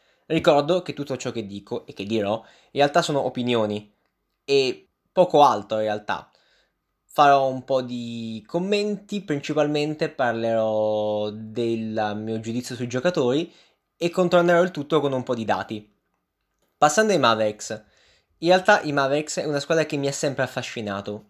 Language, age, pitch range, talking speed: Italian, 20-39, 115-165 Hz, 150 wpm